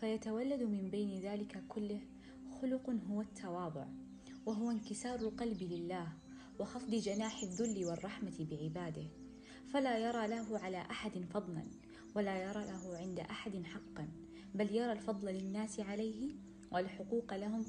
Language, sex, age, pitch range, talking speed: Arabic, female, 20-39, 180-230 Hz, 120 wpm